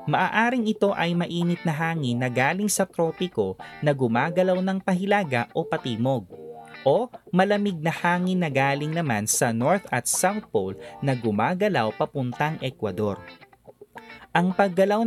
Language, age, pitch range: Filipino, 20-39, 130-180 Hz